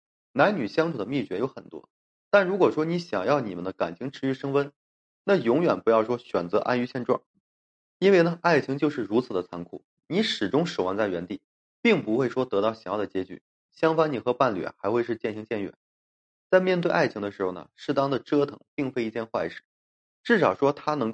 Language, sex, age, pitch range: Chinese, male, 20-39, 105-140 Hz